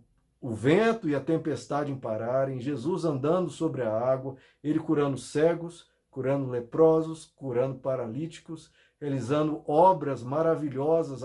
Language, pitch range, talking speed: Portuguese, 135-170 Hz, 115 wpm